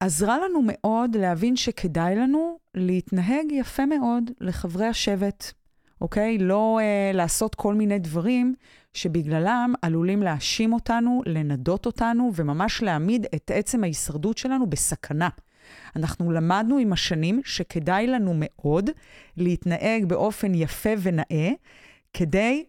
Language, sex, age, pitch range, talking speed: Hebrew, female, 30-49, 175-240 Hz, 115 wpm